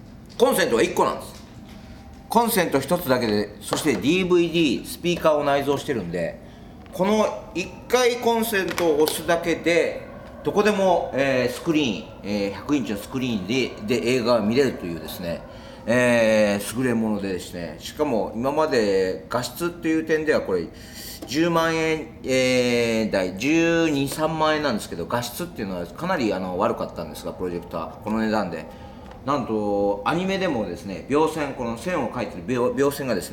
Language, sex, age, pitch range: Japanese, male, 40-59, 105-170 Hz